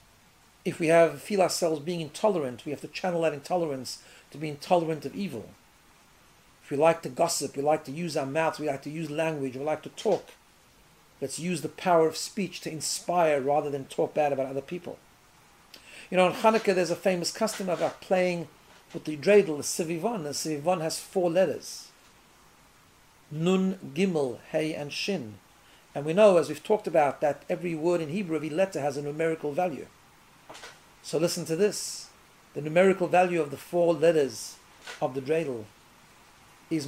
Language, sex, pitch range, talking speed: English, male, 150-185 Hz, 180 wpm